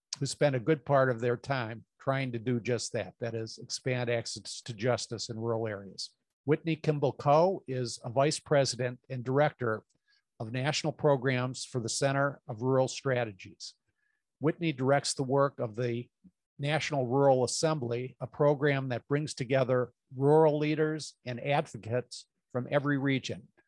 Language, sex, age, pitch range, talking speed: English, male, 50-69, 125-145 Hz, 155 wpm